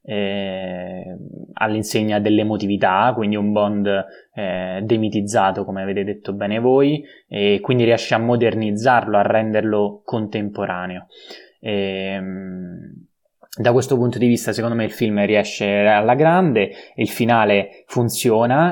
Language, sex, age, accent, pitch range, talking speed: Italian, male, 20-39, native, 100-115 Hz, 120 wpm